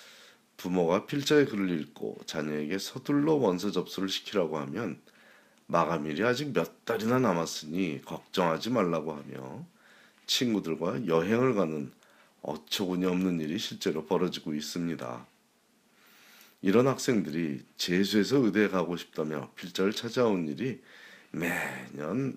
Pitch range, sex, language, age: 85-120 Hz, male, Korean, 40-59